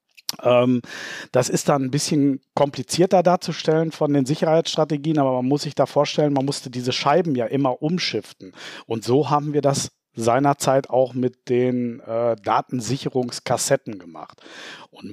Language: German